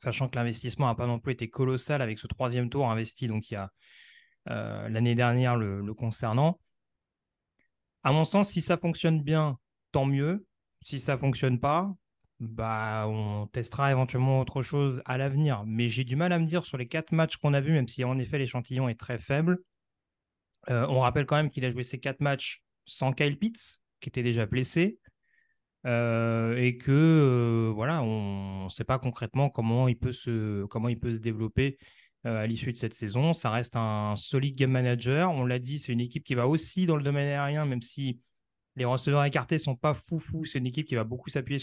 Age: 30-49